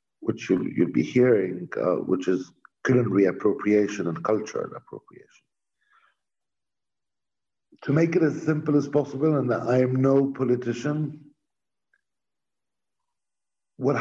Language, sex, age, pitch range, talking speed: English, male, 60-79, 120-170 Hz, 115 wpm